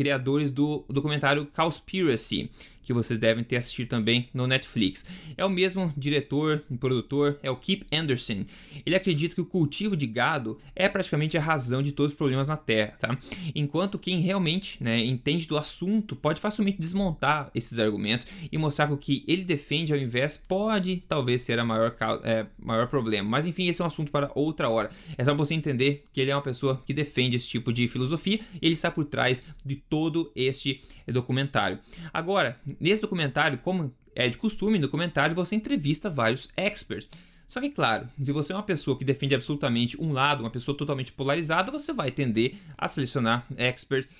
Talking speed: 185 wpm